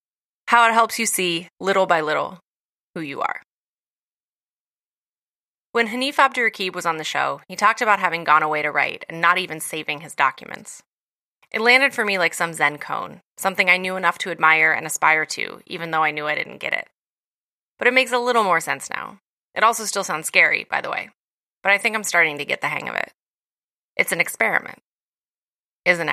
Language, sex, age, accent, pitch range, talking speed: English, female, 20-39, American, 155-220 Hz, 200 wpm